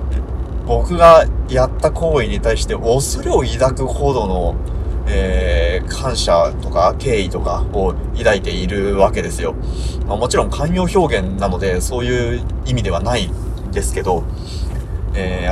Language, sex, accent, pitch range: Japanese, male, native, 75-100 Hz